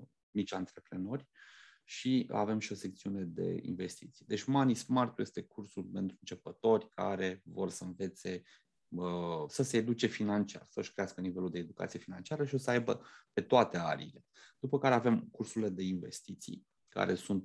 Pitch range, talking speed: 90-115 Hz, 155 wpm